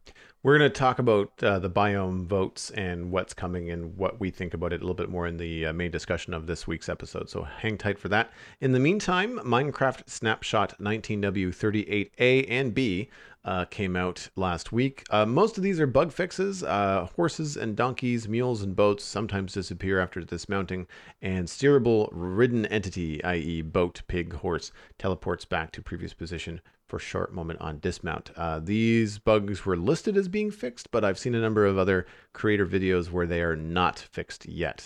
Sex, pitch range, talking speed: male, 85-110 Hz, 185 wpm